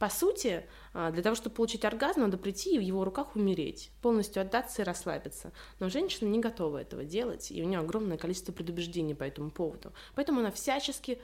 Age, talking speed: 20-39, 190 wpm